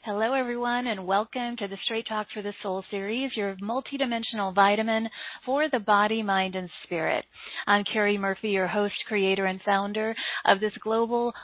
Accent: American